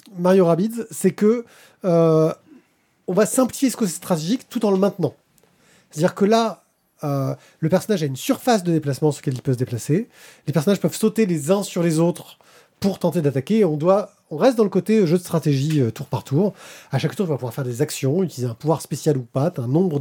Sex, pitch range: male, 140-190 Hz